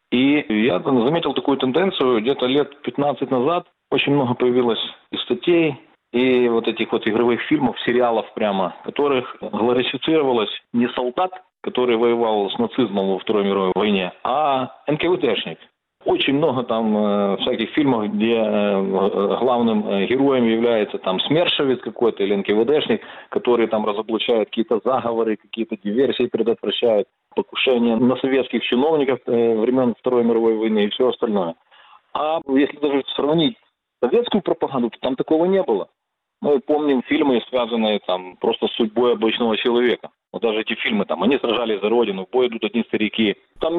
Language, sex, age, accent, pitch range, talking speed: Russian, male, 40-59, native, 115-140 Hz, 150 wpm